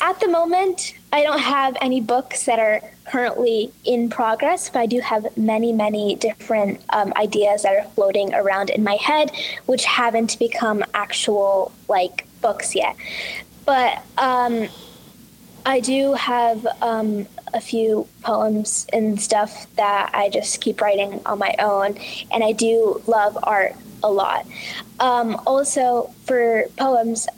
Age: 10-29